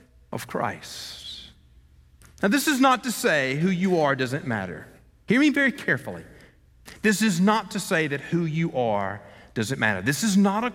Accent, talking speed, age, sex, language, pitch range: American, 180 wpm, 40-59, male, English, 95-155 Hz